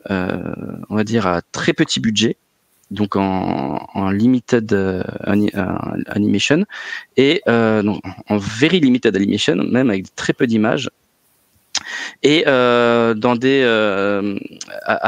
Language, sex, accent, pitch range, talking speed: French, male, French, 105-135 Hz, 130 wpm